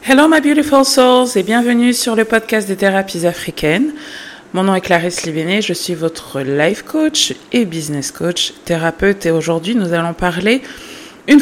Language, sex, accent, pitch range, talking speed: English, female, French, 145-190 Hz, 170 wpm